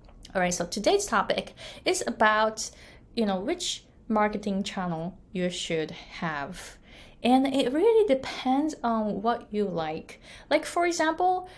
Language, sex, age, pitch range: Japanese, female, 20-39, 190-255 Hz